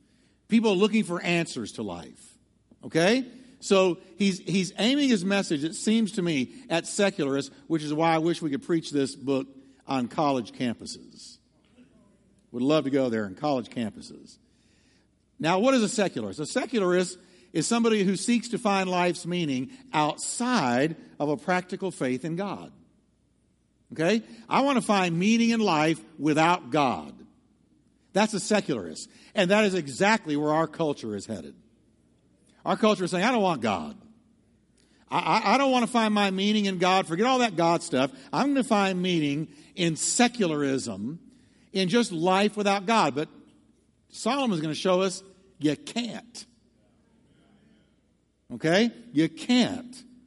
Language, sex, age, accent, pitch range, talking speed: English, male, 60-79, American, 160-225 Hz, 160 wpm